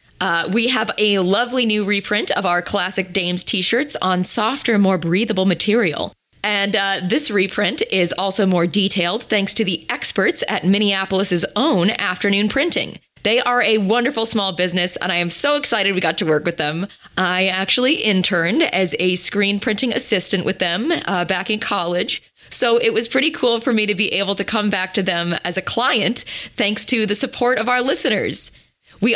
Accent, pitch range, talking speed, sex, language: American, 185-230 Hz, 185 wpm, female, English